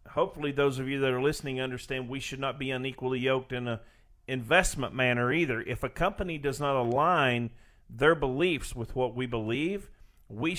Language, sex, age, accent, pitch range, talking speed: English, male, 50-69, American, 115-145 Hz, 180 wpm